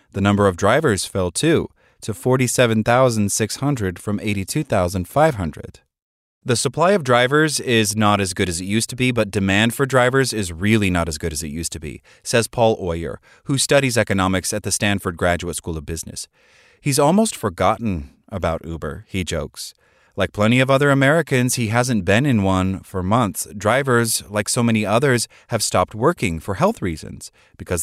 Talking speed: 175 wpm